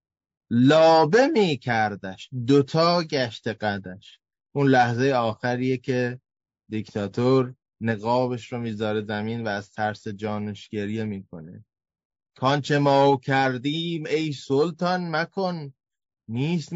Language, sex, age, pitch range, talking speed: Persian, male, 20-39, 110-150 Hz, 95 wpm